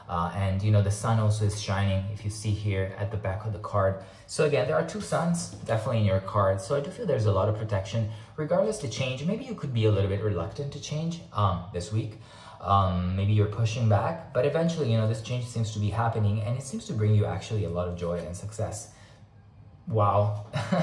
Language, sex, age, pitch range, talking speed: English, male, 20-39, 105-135 Hz, 240 wpm